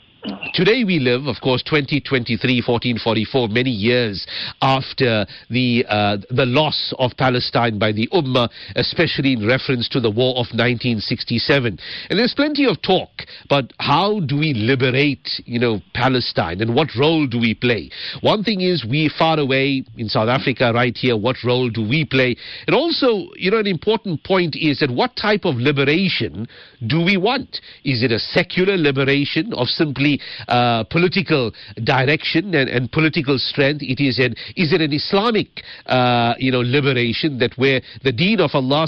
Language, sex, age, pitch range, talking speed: English, male, 50-69, 125-165 Hz, 170 wpm